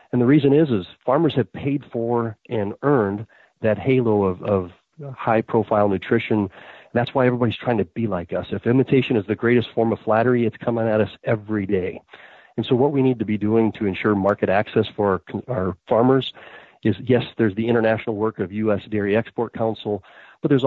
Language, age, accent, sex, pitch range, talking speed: English, 40-59, American, male, 100-120 Hz, 195 wpm